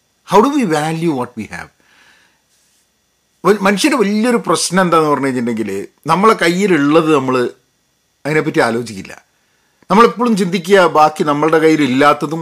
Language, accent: Malayalam, native